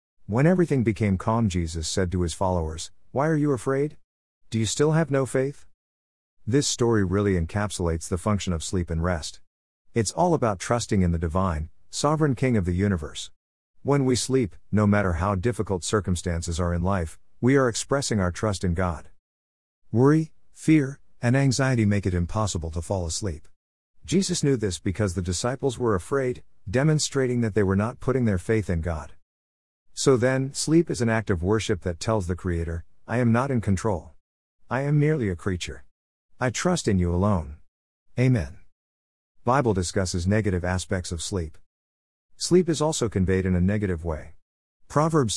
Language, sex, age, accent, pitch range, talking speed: English, male, 50-69, American, 85-120 Hz, 170 wpm